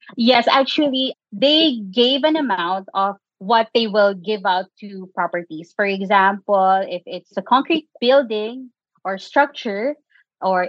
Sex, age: female, 20-39